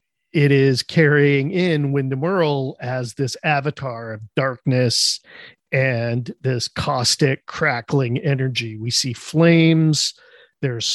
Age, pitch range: 40-59, 130-155 Hz